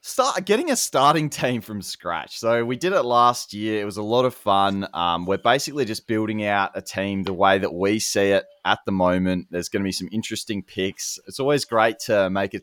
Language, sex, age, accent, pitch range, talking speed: English, male, 20-39, Australian, 90-115 Hz, 235 wpm